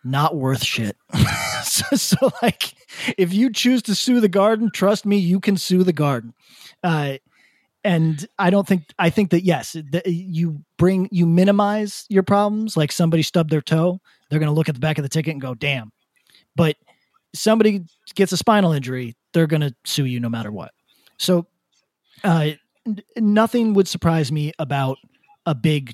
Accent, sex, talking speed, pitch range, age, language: American, male, 175 wpm, 150-200 Hz, 30-49, English